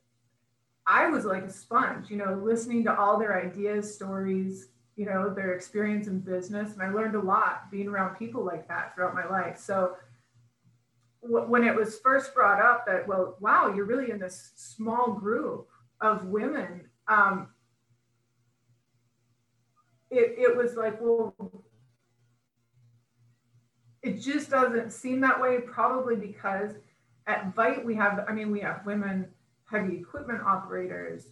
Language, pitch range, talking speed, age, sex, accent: English, 175-220 Hz, 145 wpm, 30-49, female, American